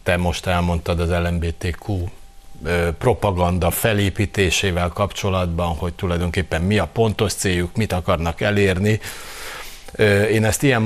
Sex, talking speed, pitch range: male, 110 wpm, 90-110 Hz